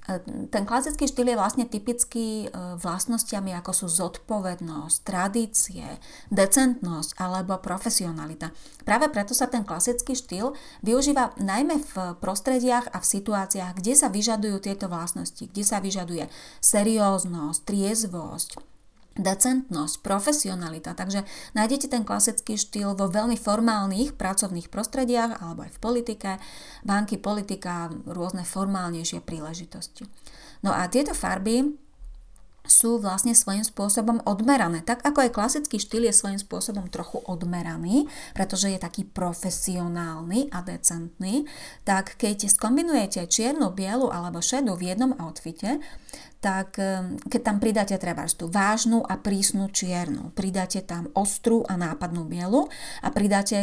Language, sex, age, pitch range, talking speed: Slovak, female, 30-49, 185-235 Hz, 125 wpm